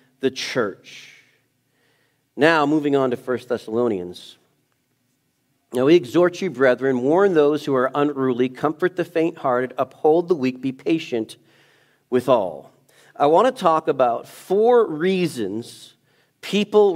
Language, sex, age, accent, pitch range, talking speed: English, male, 40-59, American, 140-180 Hz, 125 wpm